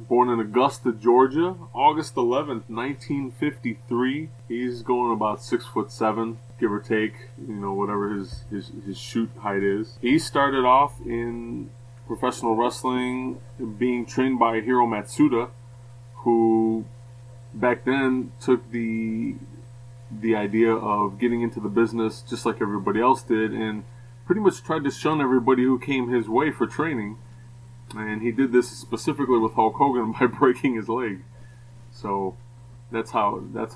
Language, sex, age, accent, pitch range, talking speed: English, male, 20-39, American, 110-125 Hz, 150 wpm